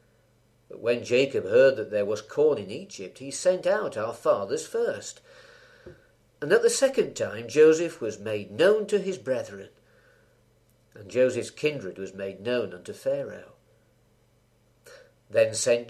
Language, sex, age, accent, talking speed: English, male, 50-69, British, 145 wpm